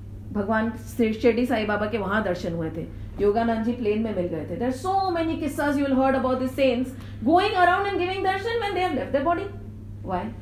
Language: English